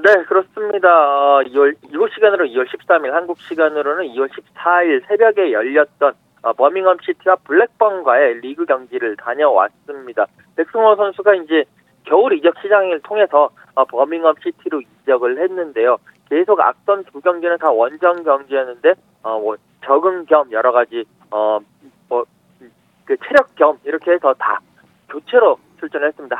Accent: native